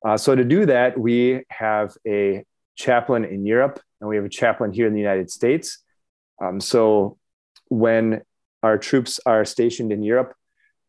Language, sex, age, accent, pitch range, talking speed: English, male, 30-49, American, 105-130 Hz, 165 wpm